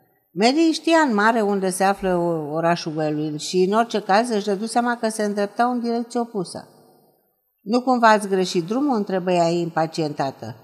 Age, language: 50-69, Romanian